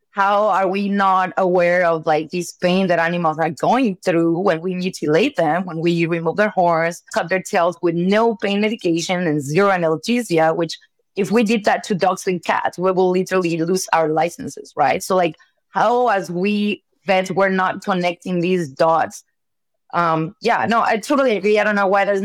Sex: female